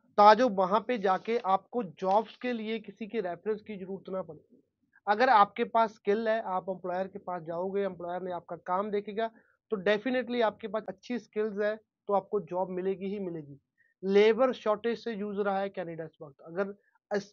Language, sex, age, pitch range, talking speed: Punjabi, male, 30-49, 180-215 Hz, 185 wpm